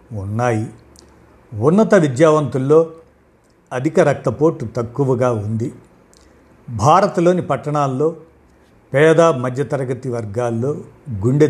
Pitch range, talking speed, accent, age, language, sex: 120-155 Hz, 70 wpm, native, 50-69, Telugu, male